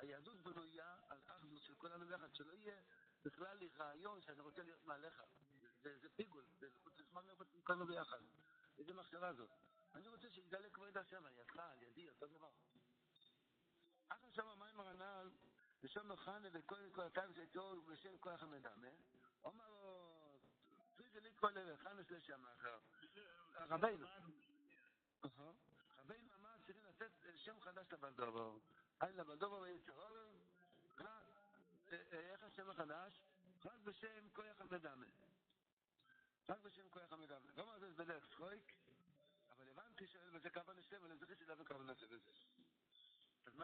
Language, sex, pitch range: Hebrew, male, 150-195 Hz